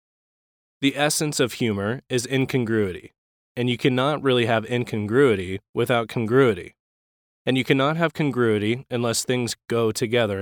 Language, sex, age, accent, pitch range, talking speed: English, male, 20-39, American, 105-125 Hz, 130 wpm